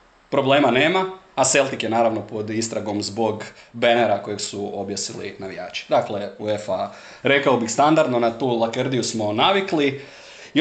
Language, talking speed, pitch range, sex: Croatian, 140 wpm, 110-135 Hz, male